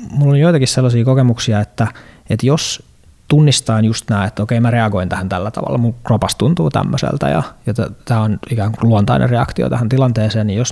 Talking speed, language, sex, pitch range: 190 wpm, Finnish, male, 105-125 Hz